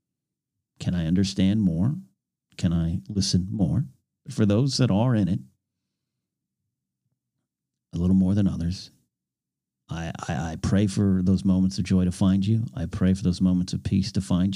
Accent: American